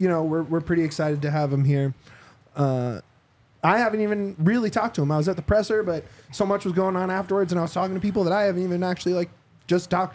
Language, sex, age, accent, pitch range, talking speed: English, male, 20-39, American, 135-200 Hz, 260 wpm